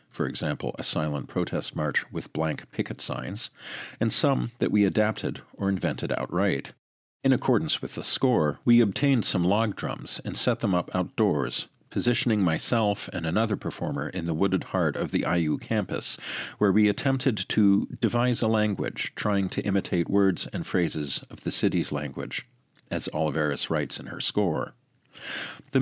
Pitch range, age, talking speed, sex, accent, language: 90-115 Hz, 50-69, 165 wpm, male, American, English